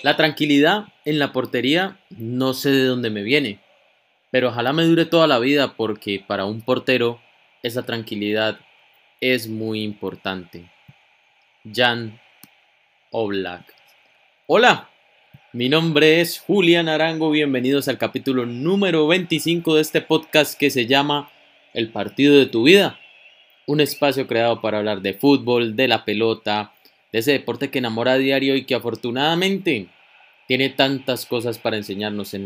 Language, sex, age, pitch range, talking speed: Spanish, male, 20-39, 110-145 Hz, 140 wpm